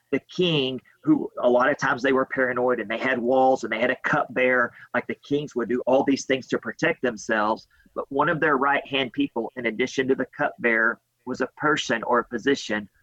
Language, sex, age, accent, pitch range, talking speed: English, male, 40-59, American, 125-160 Hz, 215 wpm